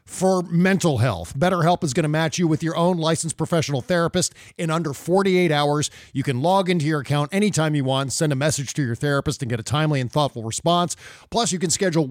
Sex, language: male, English